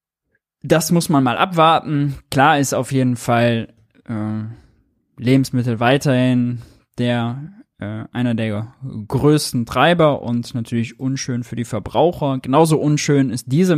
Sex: male